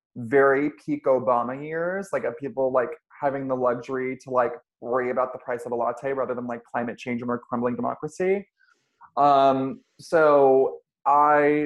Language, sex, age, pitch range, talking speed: English, male, 20-39, 125-145 Hz, 160 wpm